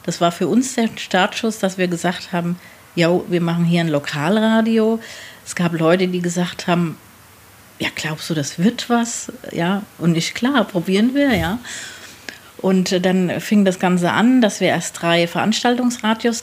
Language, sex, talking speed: German, female, 170 wpm